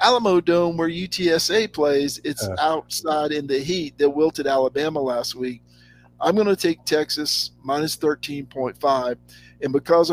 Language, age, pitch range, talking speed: English, 50-69, 120-155 Hz, 140 wpm